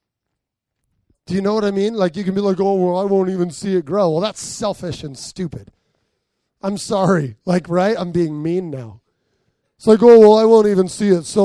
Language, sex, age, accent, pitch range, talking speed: English, male, 30-49, American, 175-235 Hz, 220 wpm